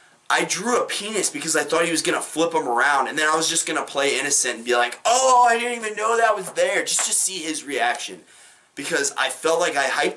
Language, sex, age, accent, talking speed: English, male, 20-39, American, 265 wpm